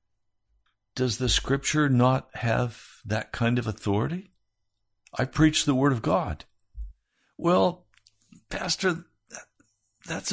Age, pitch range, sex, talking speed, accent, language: 60-79, 110-155 Hz, male, 105 wpm, American, English